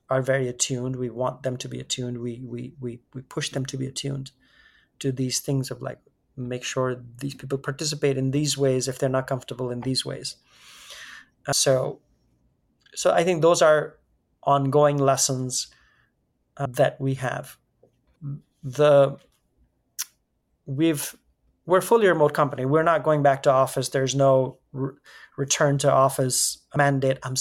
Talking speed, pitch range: 155 wpm, 130-140 Hz